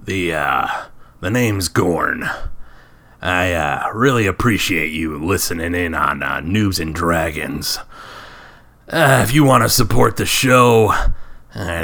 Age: 30-49